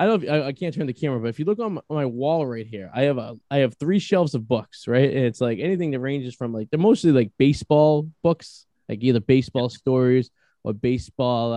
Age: 20-39